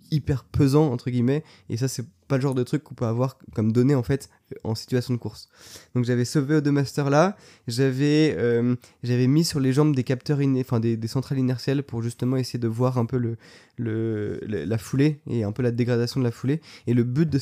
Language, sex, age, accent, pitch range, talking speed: French, male, 20-39, French, 120-140 Hz, 235 wpm